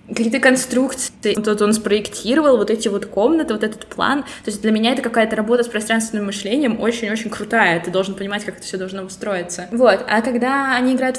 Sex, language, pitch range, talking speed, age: female, Russian, 195-235 Hz, 200 wpm, 20-39